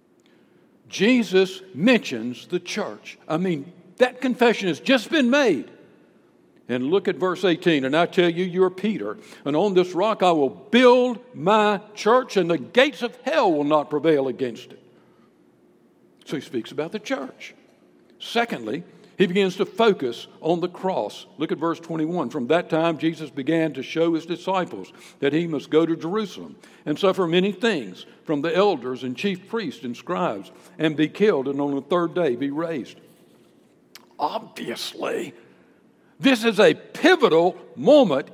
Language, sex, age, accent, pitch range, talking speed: English, male, 60-79, American, 165-235 Hz, 160 wpm